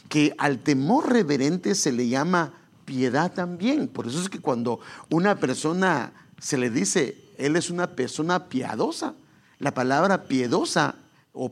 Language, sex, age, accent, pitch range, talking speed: English, male, 50-69, Mexican, 135-180 Hz, 145 wpm